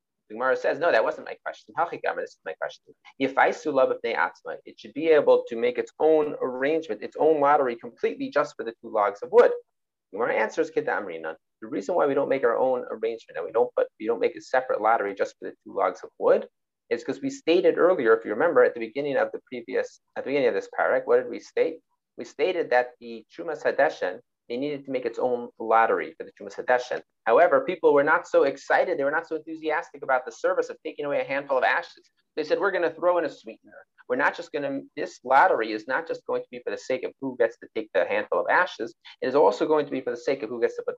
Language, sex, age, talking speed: English, male, 30-49, 255 wpm